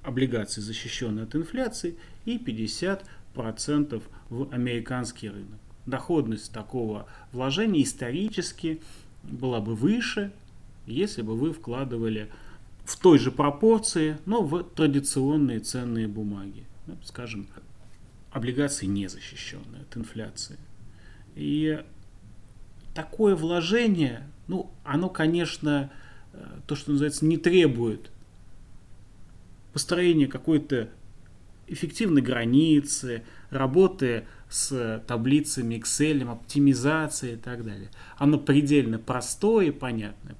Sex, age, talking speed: male, 30-49, 90 wpm